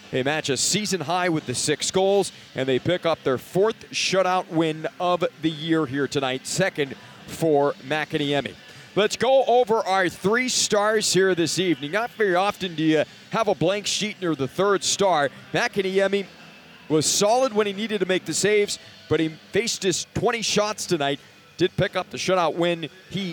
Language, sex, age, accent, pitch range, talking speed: English, male, 40-59, American, 155-200 Hz, 185 wpm